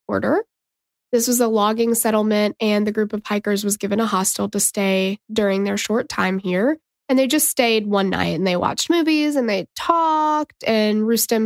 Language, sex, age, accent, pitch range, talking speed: English, female, 20-39, American, 200-240 Hz, 195 wpm